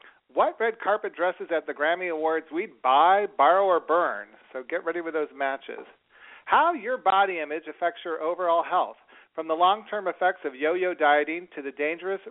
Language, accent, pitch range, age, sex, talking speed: English, American, 150-210 Hz, 40-59, male, 180 wpm